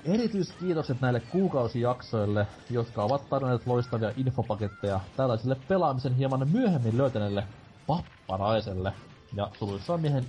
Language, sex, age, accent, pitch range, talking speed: Finnish, male, 30-49, native, 110-145 Hz, 100 wpm